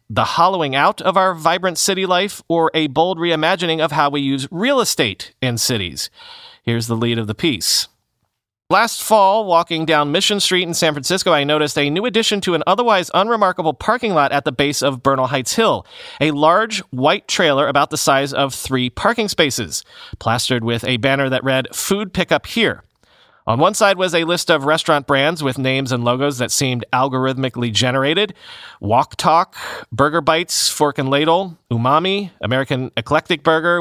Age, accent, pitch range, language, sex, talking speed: 40-59, American, 125-170 Hz, English, male, 180 wpm